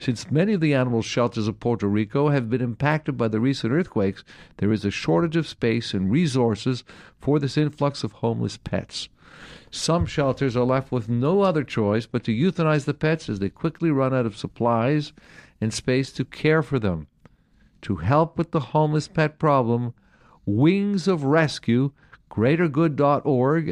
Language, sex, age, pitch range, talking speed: English, male, 50-69, 115-155 Hz, 170 wpm